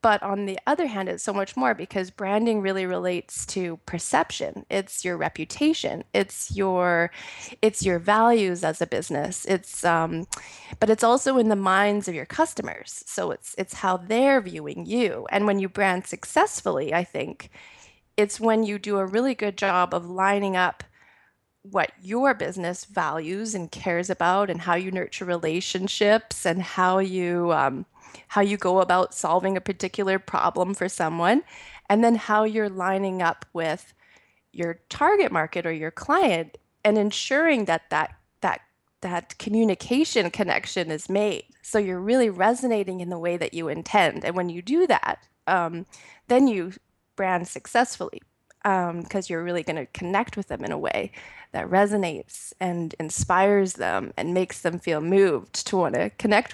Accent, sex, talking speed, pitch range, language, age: American, female, 165 wpm, 175-215 Hz, English, 20-39